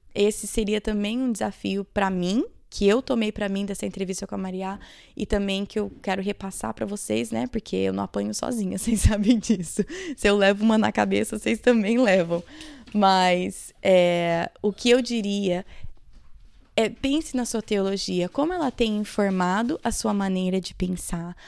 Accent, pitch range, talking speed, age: Brazilian, 180-215 Hz, 175 wpm, 20-39